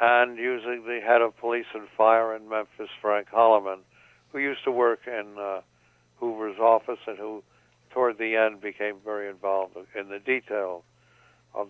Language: English